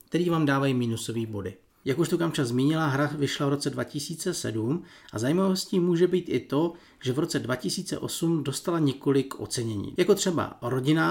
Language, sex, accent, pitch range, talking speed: Czech, male, native, 125-160 Hz, 165 wpm